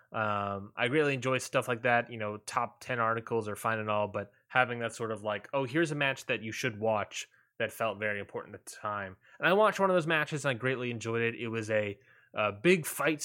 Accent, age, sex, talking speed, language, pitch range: American, 20-39, male, 250 wpm, English, 115-155 Hz